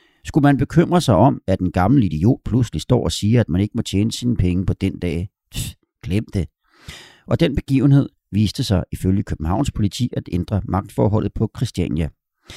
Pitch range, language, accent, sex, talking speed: 90-120 Hz, Danish, native, male, 185 wpm